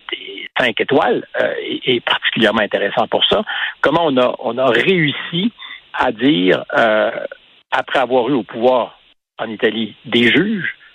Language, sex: French, male